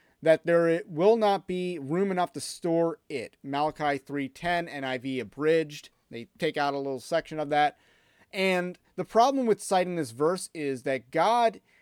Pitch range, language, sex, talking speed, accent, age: 150-205 Hz, English, male, 160 wpm, American, 30-49